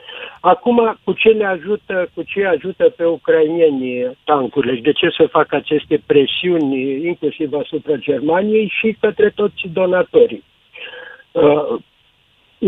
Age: 50-69